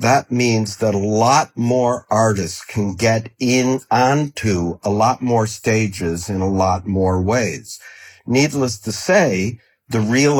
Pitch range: 100-125 Hz